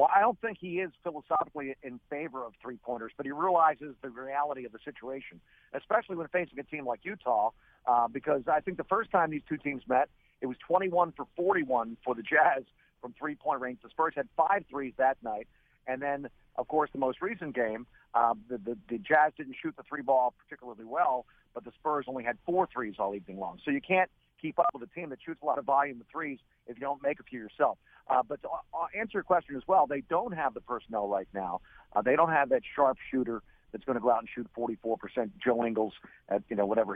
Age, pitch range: 50-69, 115-150 Hz